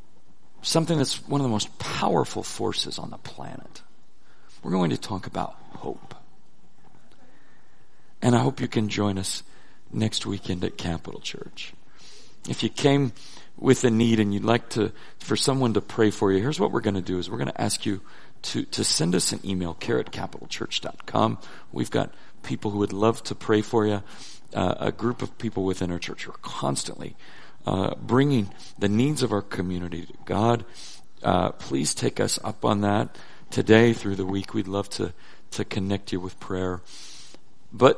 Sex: male